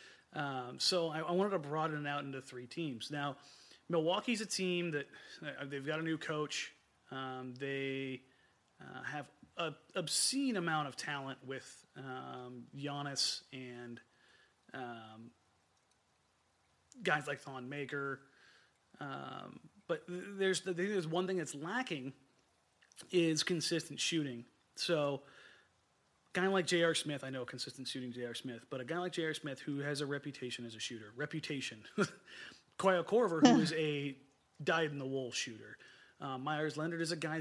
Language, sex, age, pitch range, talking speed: English, male, 30-49, 130-165 Hz, 150 wpm